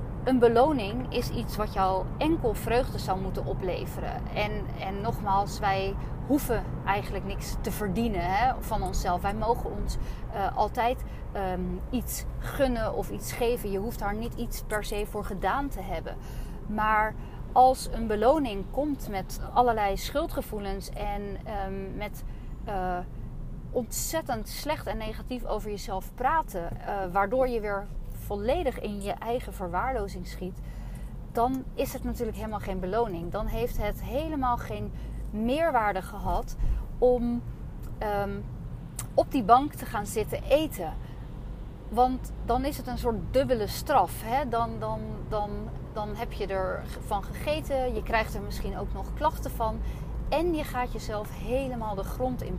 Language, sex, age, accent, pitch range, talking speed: Dutch, female, 30-49, Dutch, 190-250 Hz, 145 wpm